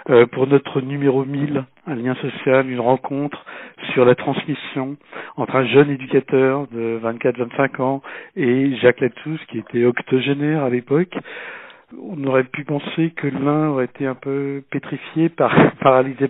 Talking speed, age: 145 wpm, 60-79